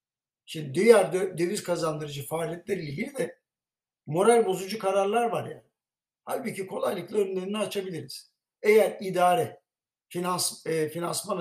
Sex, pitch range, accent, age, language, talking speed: male, 160-220 Hz, native, 60-79, Turkish, 110 wpm